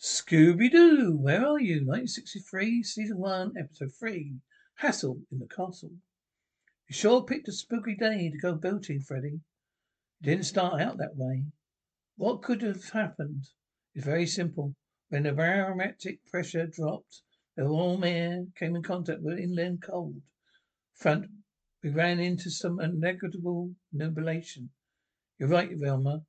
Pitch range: 150-180 Hz